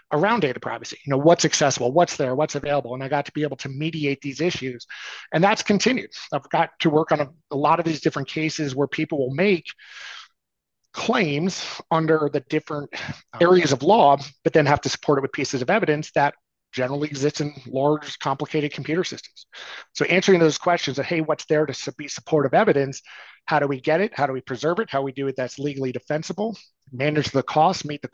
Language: English